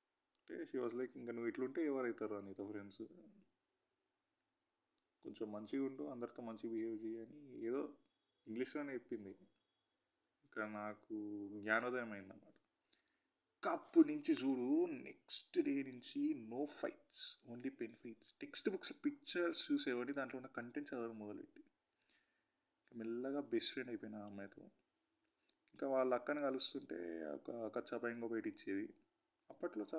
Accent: Indian